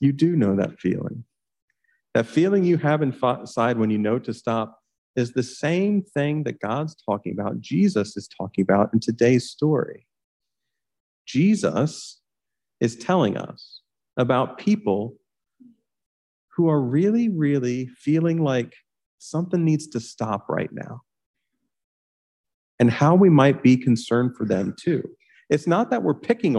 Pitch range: 120-170 Hz